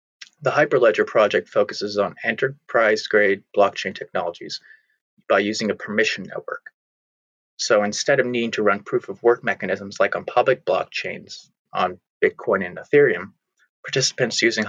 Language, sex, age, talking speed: English, male, 30-49, 125 wpm